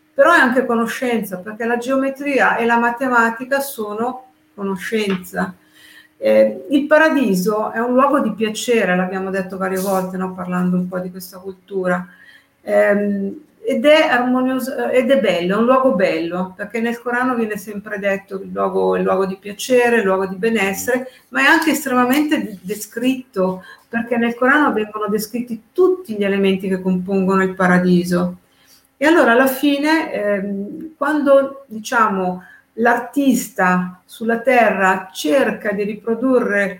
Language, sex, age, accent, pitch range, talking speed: Italian, female, 50-69, native, 190-255 Hz, 145 wpm